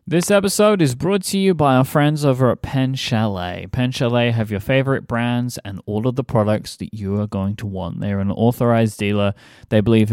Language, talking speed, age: English, 215 wpm, 30-49